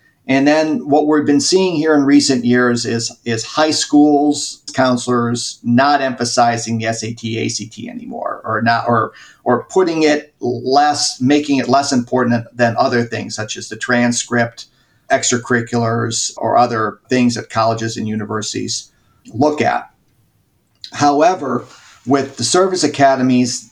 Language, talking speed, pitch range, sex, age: English, 135 wpm, 120-150 Hz, male, 50-69